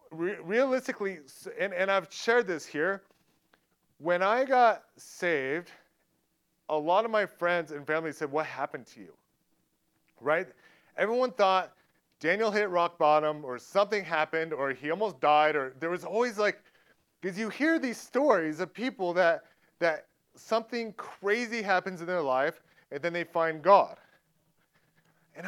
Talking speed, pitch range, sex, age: 150 wpm, 160-205 Hz, male, 30-49